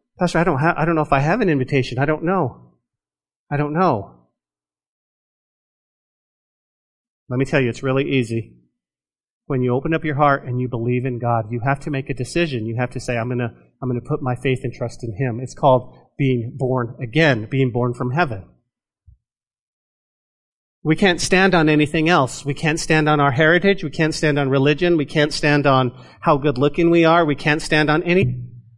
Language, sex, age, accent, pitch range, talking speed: English, male, 40-59, American, 125-155 Hz, 200 wpm